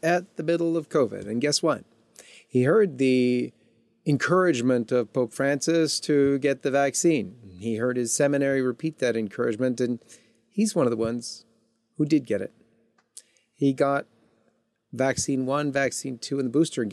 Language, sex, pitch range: English, male, 115-150 Hz